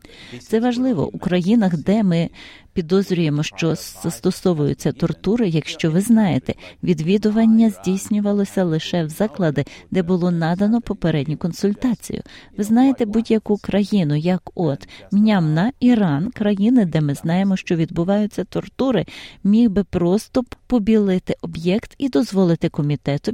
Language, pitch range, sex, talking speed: Ukrainian, 155-220 Hz, female, 120 wpm